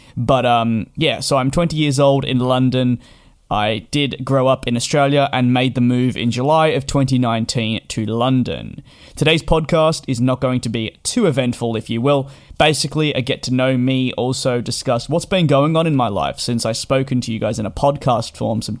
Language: English